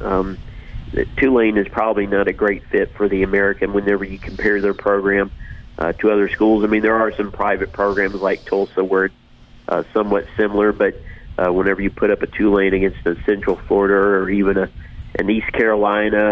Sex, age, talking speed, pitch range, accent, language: male, 40-59, 190 wpm, 95-110 Hz, American, English